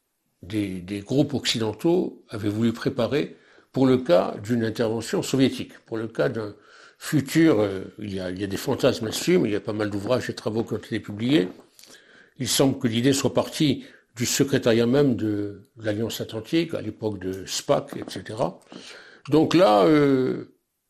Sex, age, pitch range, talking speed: male, 60-79, 115-150 Hz, 180 wpm